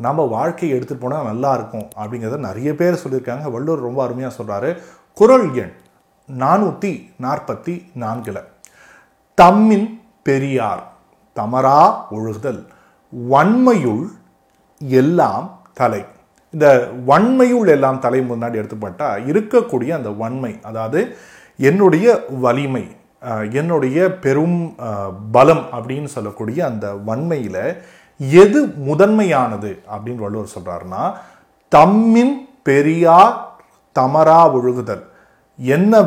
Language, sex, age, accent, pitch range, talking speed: Tamil, male, 30-49, native, 115-165 Hz, 90 wpm